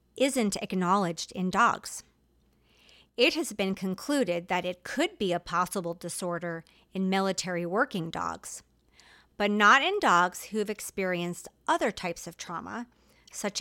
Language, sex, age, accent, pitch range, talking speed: English, female, 40-59, American, 175-240 Hz, 135 wpm